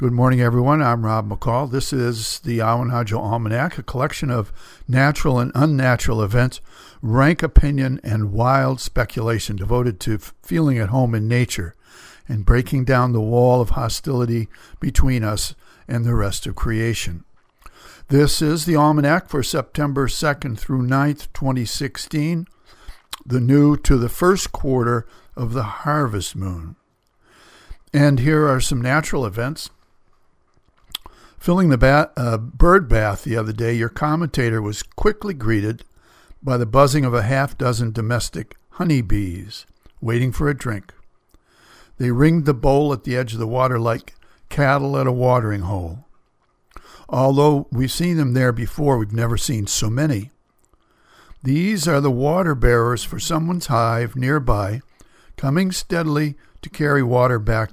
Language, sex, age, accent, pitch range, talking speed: English, male, 60-79, American, 115-145 Hz, 145 wpm